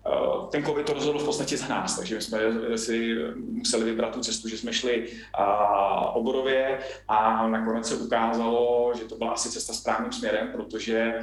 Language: Czech